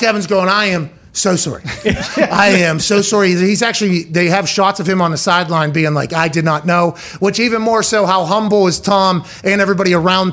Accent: American